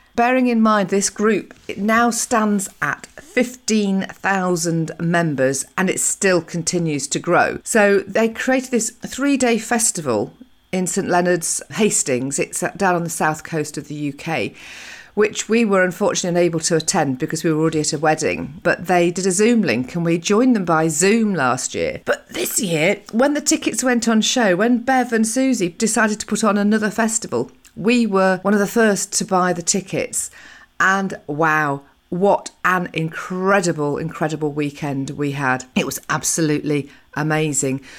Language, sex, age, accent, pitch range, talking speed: English, female, 40-59, British, 160-220 Hz, 165 wpm